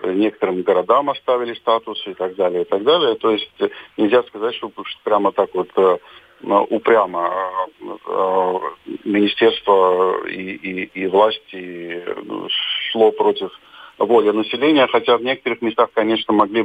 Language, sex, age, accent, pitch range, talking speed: Russian, male, 40-59, native, 100-120 Hz, 125 wpm